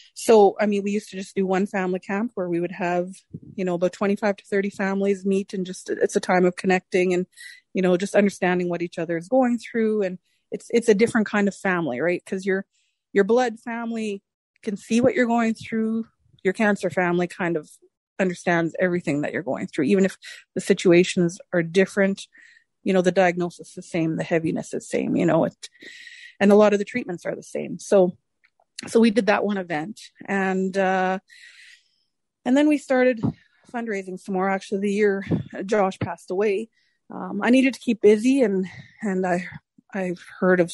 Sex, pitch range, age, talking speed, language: female, 180-225 Hz, 30-49, 200 wpm, English